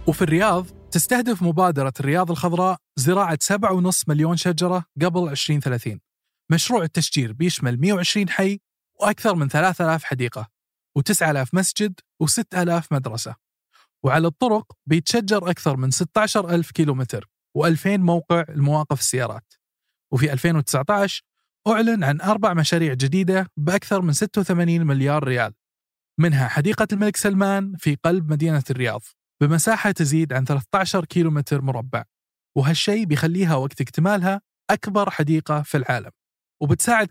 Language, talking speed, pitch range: Arabic, 115 wpm, 135-185 Hz